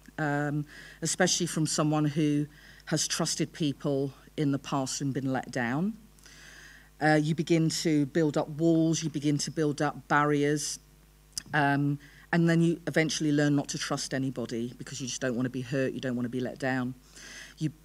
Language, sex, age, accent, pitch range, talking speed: English, female, 40-59, British, 140-160 Hz, 180 wpm